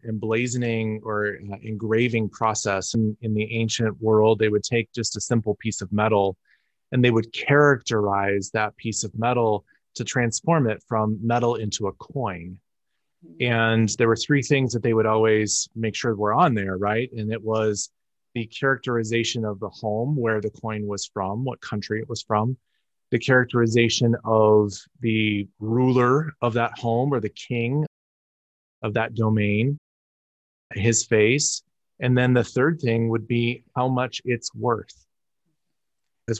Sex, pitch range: male, 105-125 Hz